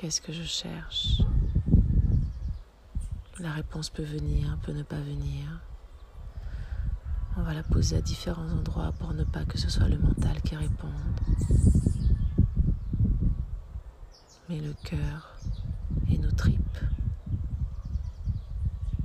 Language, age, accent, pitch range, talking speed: French, 40-59, French, 75-105 Hz, 110 wpm